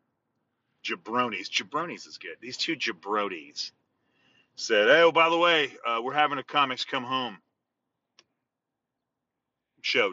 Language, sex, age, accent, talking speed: English, male, 30-49, American, 120 wpm